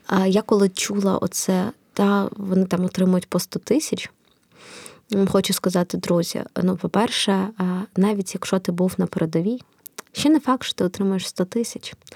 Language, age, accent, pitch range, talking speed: Ukrainian, 20-39, native, 180-210 Hz, 150 wpm